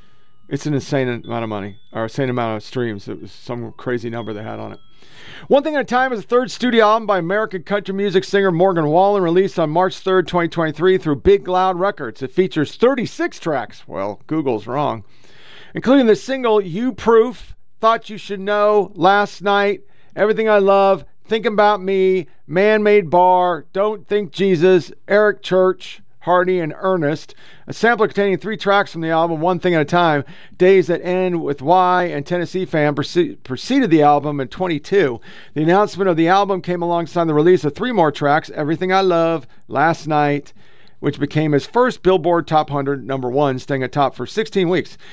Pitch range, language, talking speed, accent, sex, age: 145-200 Hz, English, 185 wpm, American, male, 40-59